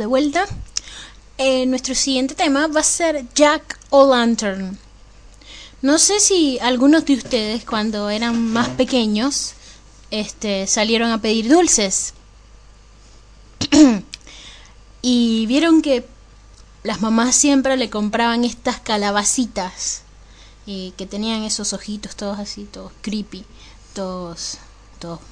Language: Spanish